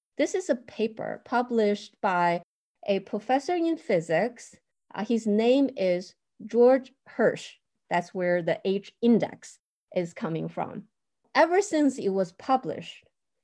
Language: English